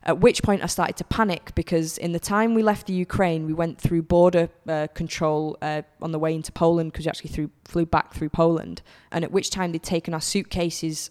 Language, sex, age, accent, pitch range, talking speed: English, female, 20-39, British, 160-190 Hz, 225 wpm